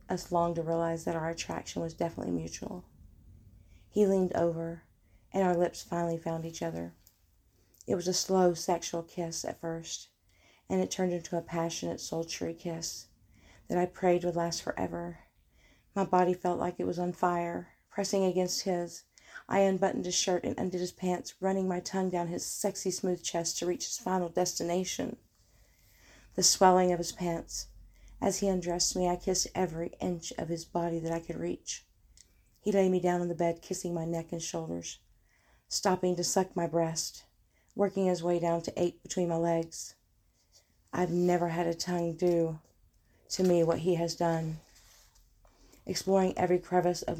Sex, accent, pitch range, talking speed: female, American, 165-185 Hz, 175 wpm